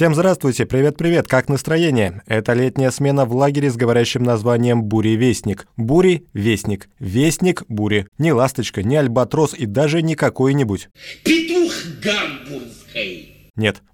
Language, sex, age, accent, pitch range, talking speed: Russian, male, 20-39, native, 110-140 Hz, 110 wpm